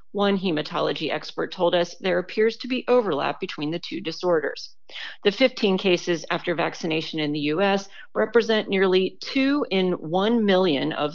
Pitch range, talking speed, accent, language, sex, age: 165-215 Hz, 155 wpm, American, English, female, 40-59